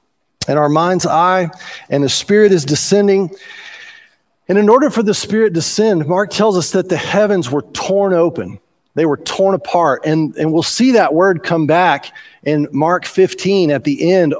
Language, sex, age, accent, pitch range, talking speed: English, male, 40-59, American, 140-195 Hz, 185 wpm